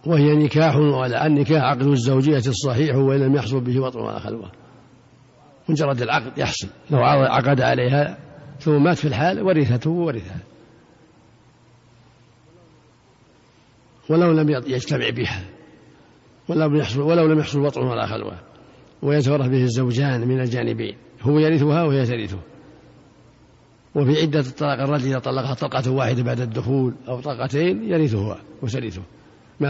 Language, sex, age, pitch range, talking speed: Arabic, male, 50-69, 125-150 Hz, 120 wpm